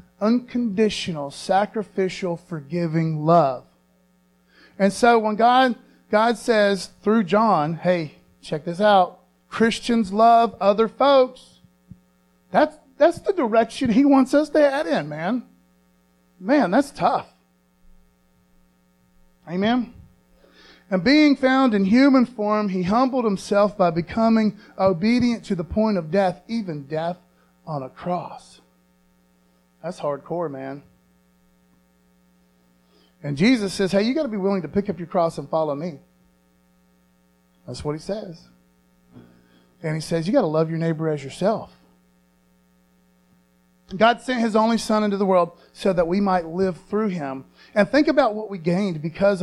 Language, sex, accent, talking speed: English, male, American, 140 wpm